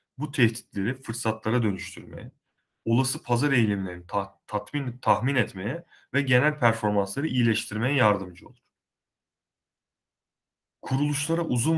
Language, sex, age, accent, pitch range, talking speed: Turkish, male, 30-49, native, 105-125 Hz, 85 wpm